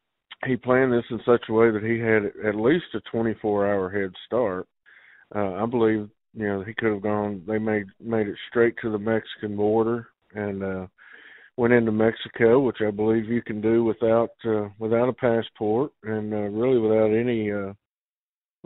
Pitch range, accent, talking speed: 105-115 Hz, American, 185 wpm